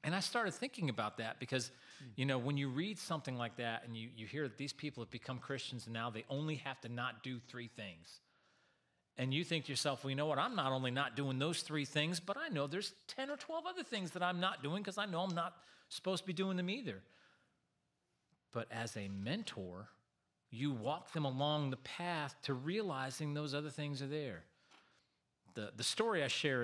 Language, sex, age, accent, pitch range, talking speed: English, male, 40-59, American, 115-150 Hz, 220 wpm